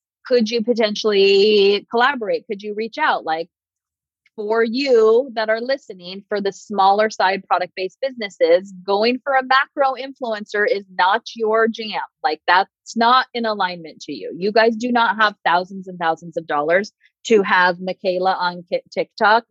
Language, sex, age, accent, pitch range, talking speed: English, female, 30-49, American, 170-225 Hz, 155 wpm